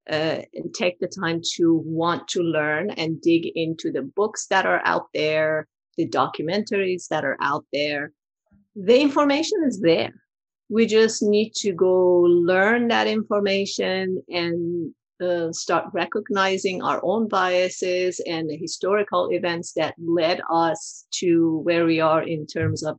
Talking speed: 150 wpm